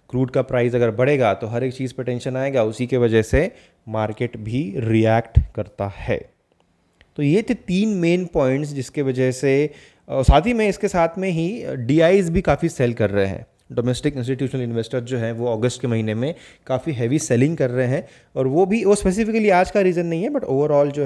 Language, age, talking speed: Hindi, 20-39, 210 wpm